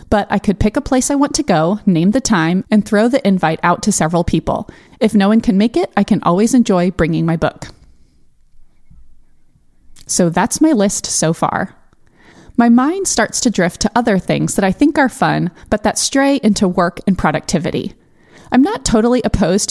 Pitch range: 180-240 Hz